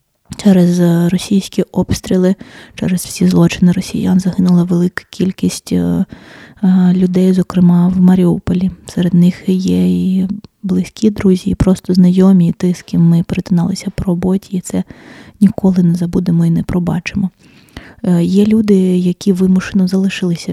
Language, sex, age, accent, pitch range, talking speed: Ukrainian, female, 20-39, native, 180-200 Hz, 130 wpm